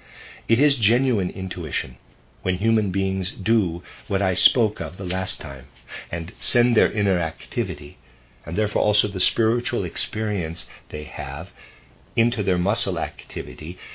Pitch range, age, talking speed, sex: 80-115 Hz, 50-69, 140 wpm, male